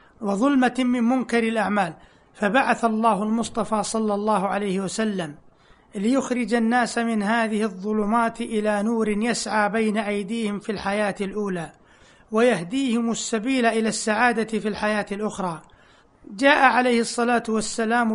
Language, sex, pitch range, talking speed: Arabic, male, 210-240 Hz, 115 wpm